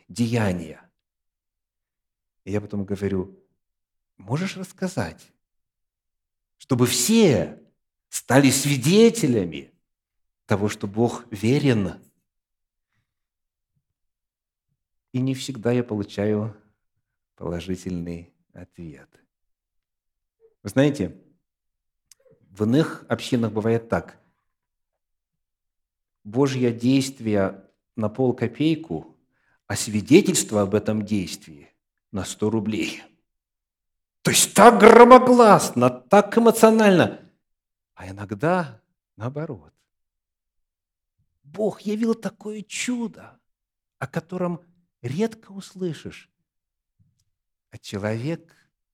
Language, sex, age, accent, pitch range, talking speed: Russian, male, 50-69, native, 95-155 Hz, 70 wpm